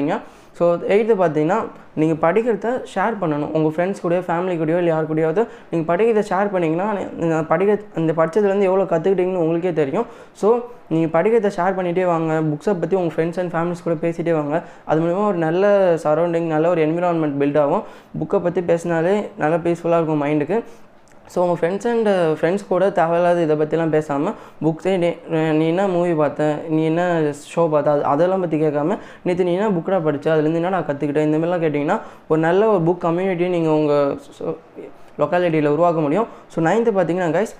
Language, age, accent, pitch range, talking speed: Tamil, 20-39, native, 155-180 Hz, 100 wpm